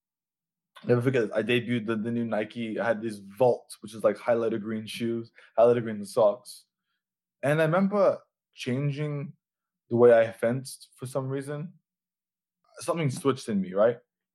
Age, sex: 20-39, male